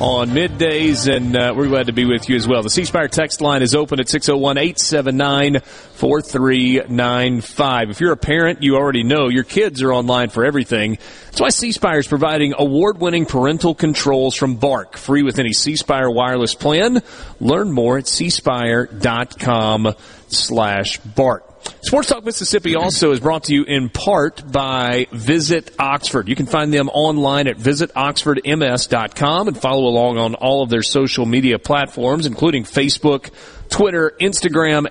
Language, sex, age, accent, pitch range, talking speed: English, male, 40-59, American, 125-155 Hz, 155 wpm